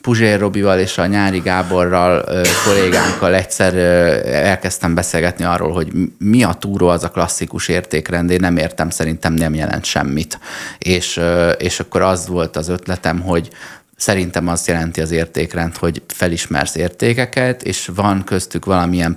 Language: Hungarian